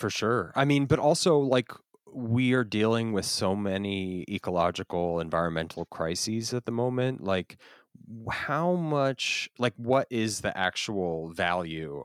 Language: English